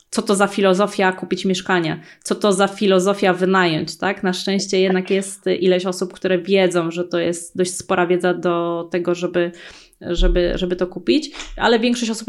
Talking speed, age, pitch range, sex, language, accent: 175 wpm, 20-39, 180-200 Hz, female, Polish, native